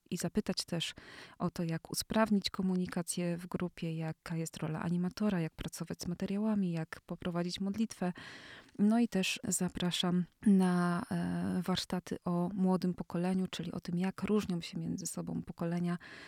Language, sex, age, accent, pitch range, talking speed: Polish, female, 20-39, native, 170-195 Hz, 145 wpm